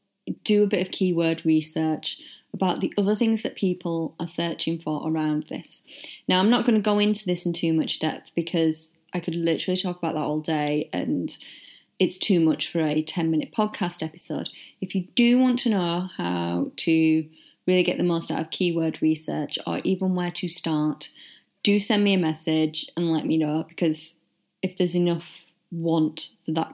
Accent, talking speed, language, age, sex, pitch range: British, 190 wpm, English, 20-39, female, 160-210 Hz